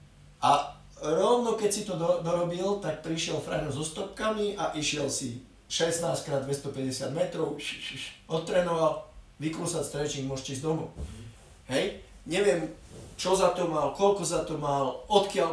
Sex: male